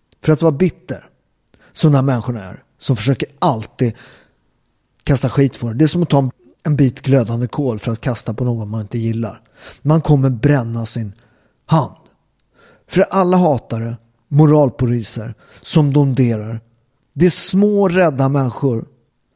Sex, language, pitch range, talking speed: male, Swedish, 115-145 Hz, 145 wpm